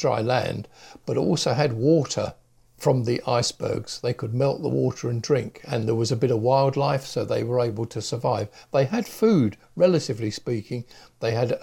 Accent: British